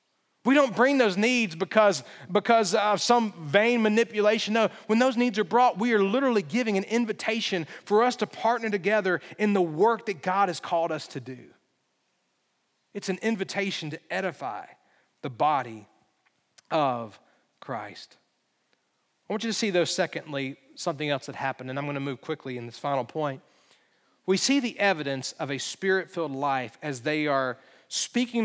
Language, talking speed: English, 170 wpm